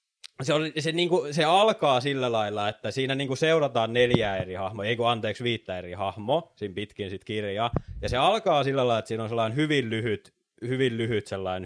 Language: Finnish